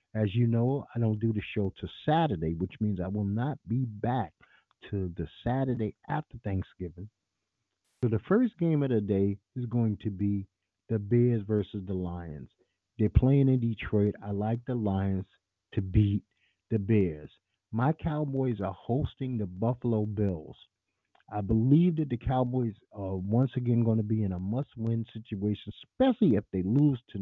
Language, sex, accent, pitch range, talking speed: English, male, American, 100-125 Hz, 170 wpm